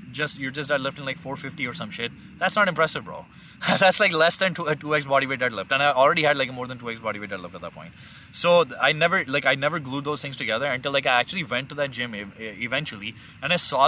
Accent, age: Indian, 20-39